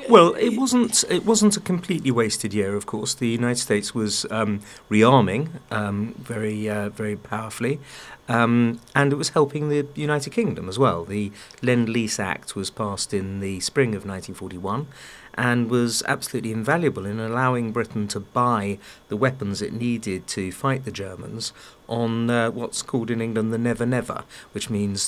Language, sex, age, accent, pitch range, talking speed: English, male, 40-59, British, 105-130 Hz, 165 wpm